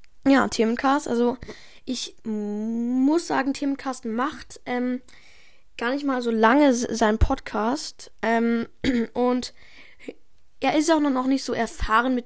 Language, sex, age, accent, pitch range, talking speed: German, female, 10-29, German, 210-245 Hz, 135 wpm